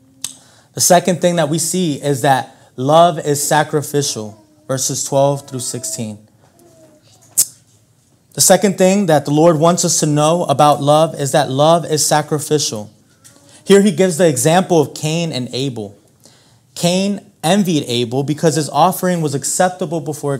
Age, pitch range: 30-49, 125-165 Hz